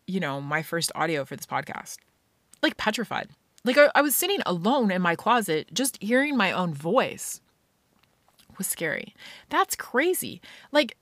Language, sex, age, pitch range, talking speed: English, female, 30-49, 160-220 Hz, 155 wpm